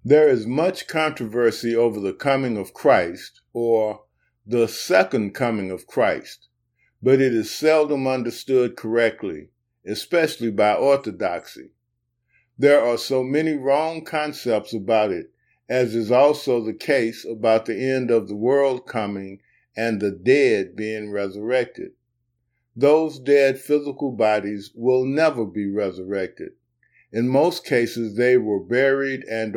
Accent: American